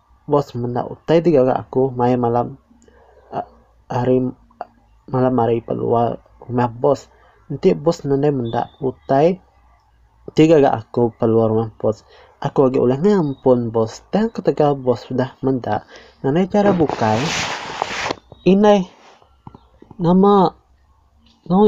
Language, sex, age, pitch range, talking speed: Malay, male, 20-39, 115-150 Hz, 115 wpm